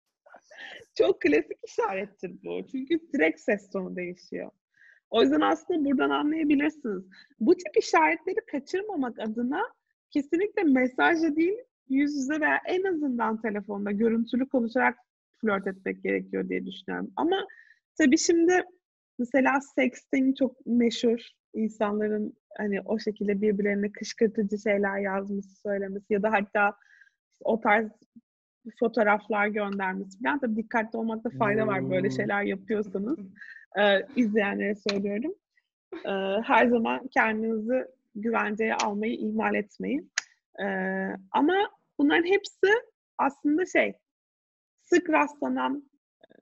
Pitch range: 205-305 Hz